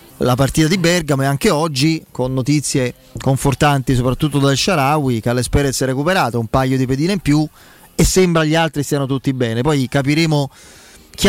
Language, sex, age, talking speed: Italian, male, 30-49, 175 wpm